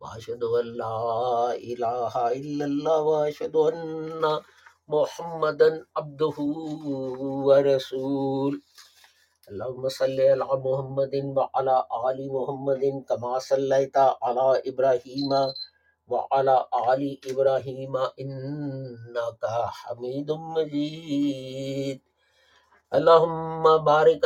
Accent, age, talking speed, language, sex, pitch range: Indian, 50-69, 70 wpm, English, male, 135-155 Hz